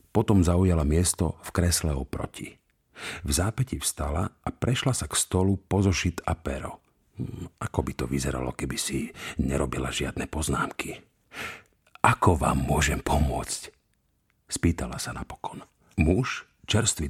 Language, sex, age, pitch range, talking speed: Slovak, male, 50-69, 80-110 Hz, 125 wpm